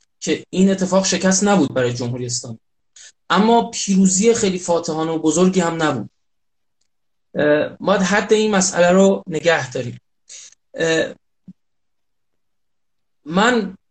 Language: Persian